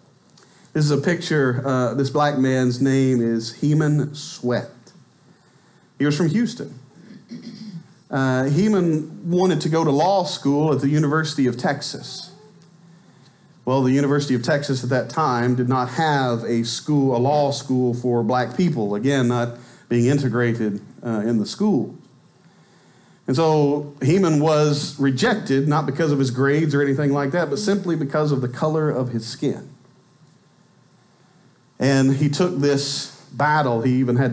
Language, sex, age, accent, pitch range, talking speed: English, male, 40-59, American, 125-160 Hz, 150 wpm